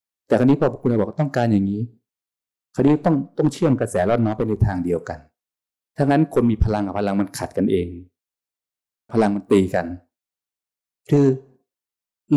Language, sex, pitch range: Thai, male, 90-125 Hz